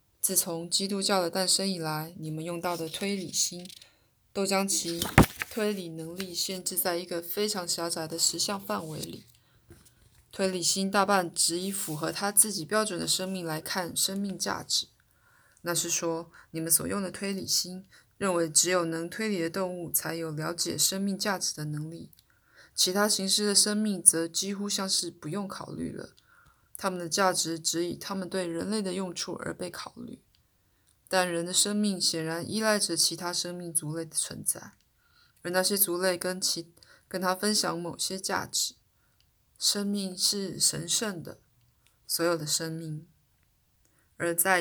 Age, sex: 20-39, female